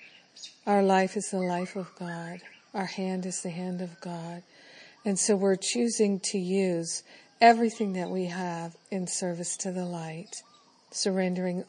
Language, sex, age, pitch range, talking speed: English, female, 50-69, 180-205 Hz, 155 wpm